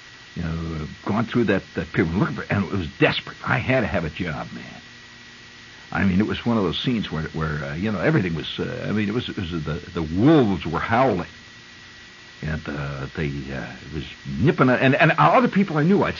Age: 60-79